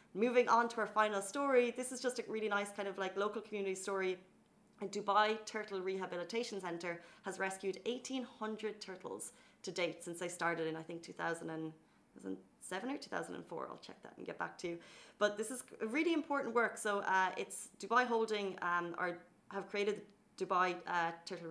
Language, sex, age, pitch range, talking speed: Arabic, female, 30-49, 175-220 Hz, 180 wpm